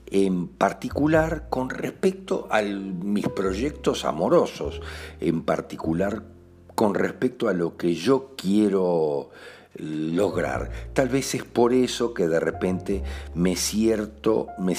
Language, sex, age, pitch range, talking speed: Spanish, male, 60-79, 85-110 Hz, 115 wpm